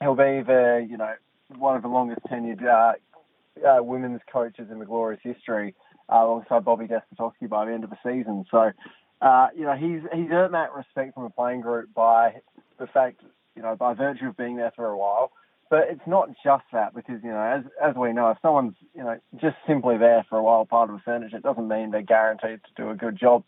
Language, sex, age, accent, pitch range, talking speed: English, male, 20-39, Australian, 115-140 Hz, 230 wpm